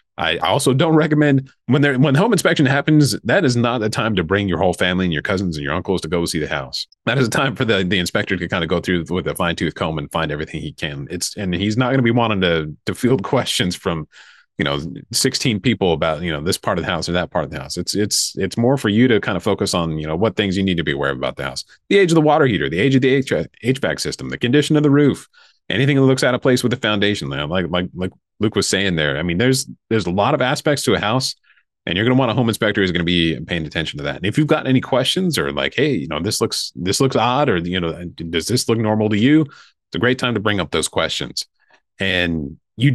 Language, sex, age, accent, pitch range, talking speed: English, male, 30-49, American, 90-130 Hz, 290 wpm